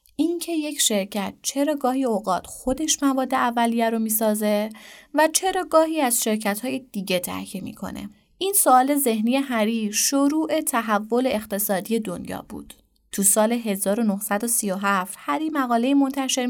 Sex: female